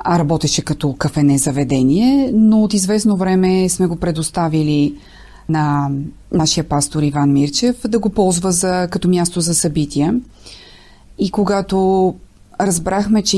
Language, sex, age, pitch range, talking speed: Bulgarian, female, 30-49, 155-185 Hz, 130 wpm